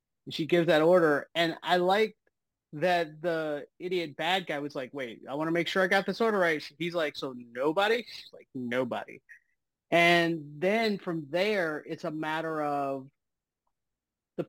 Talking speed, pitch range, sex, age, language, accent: 170 wpm, 155-205 Hz, male, 30-49, English, American